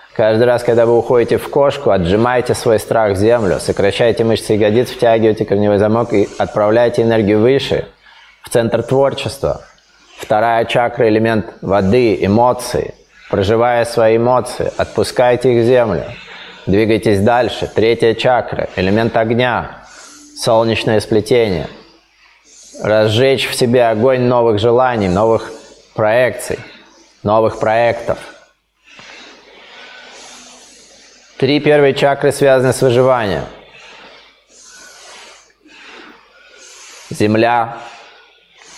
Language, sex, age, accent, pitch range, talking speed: Russian, male, 20-39, native, 110-130 Hz, 95 wpm